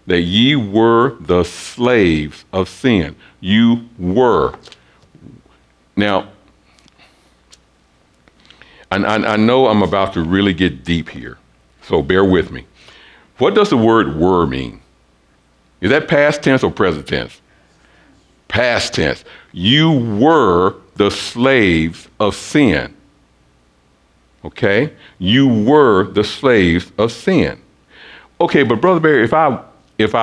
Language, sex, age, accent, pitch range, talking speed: English, male, 60-79, American, 80-125 Hz, 115 wpm